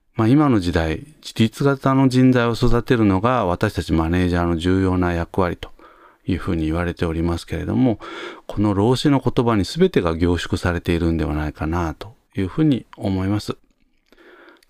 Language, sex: Japanese, male